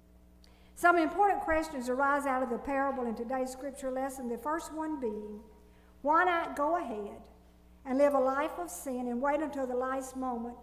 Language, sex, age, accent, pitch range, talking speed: English, female, 60-79, American, 225-300 Hz, 180 wpm